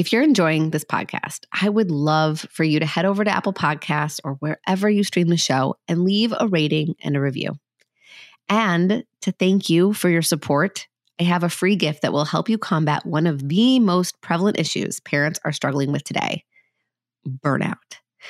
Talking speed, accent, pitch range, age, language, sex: 190 wpm, American, 150-200 Hz, 30-49, English, female